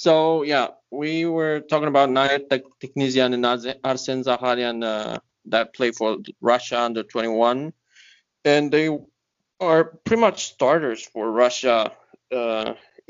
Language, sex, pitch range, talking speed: English, male, 120-150 Hz, 120 wpm